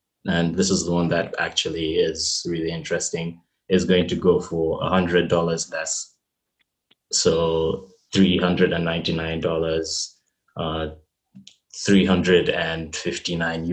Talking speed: 85 wpm